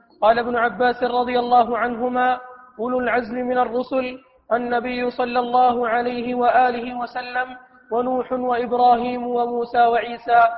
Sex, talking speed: male, 115 wpm